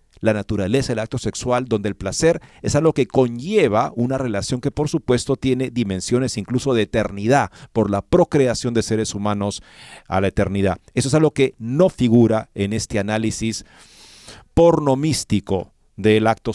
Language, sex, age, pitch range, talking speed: Spanish, male, 50-69, 105-155 Hz, 155 wpm